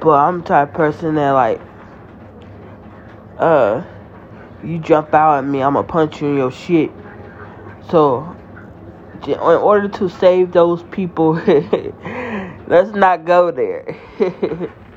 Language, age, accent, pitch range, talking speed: English, 20-39, American, 105-145 Hz, 130 wpm